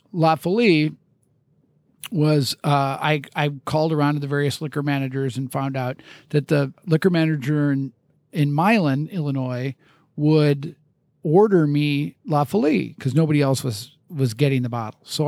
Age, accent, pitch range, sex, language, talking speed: 50-69, American, 140-175 Hz, male, English, 150 wpm